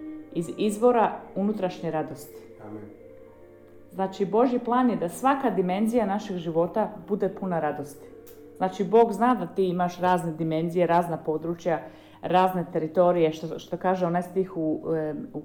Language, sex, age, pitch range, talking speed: Croatian, female, 40-59, 160-215 Hz, 135 wpm